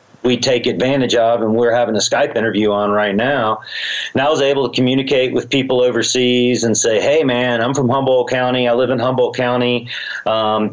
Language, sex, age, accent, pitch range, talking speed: English, male, 40-59, American, 100-125 Hz, 200 wpm